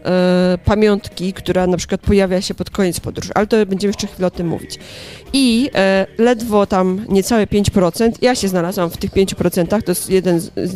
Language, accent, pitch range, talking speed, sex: Polish, native, 180-215 Hz, 180 wpm, female